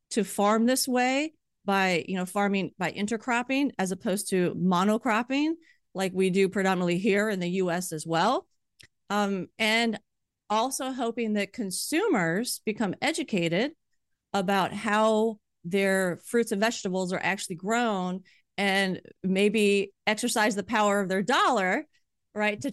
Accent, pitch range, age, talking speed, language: American, 185-230 Hz, 40-59, 135 wpm, English